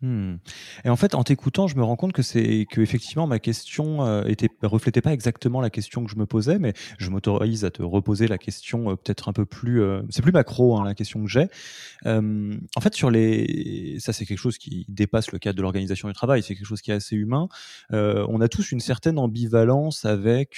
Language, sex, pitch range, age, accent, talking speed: French, male, 100-125 Hz, 20-39, French, 235 wpm